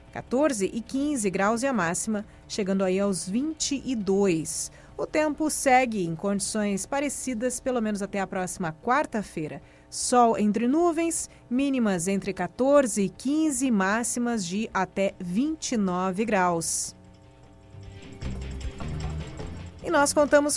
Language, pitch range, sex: Portuguese, 195-255 Hz, female